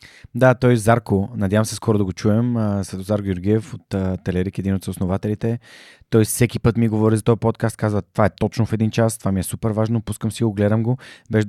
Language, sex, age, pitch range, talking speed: Bulgarian, male, 20-39, 100-115 Hz, 230 wpm